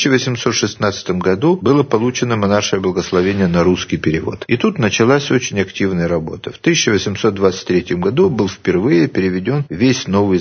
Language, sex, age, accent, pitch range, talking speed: Russian, male, 50-69, native, 100-130 Hz, 145 wpm